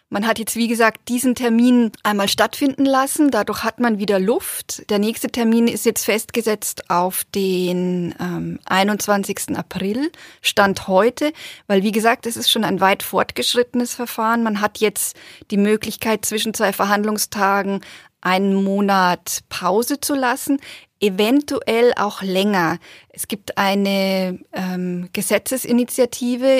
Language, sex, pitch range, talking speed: German, female, 195-230 Hz, 135 wpm